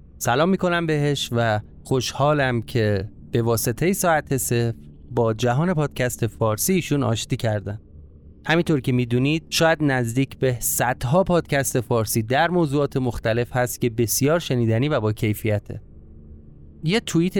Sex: male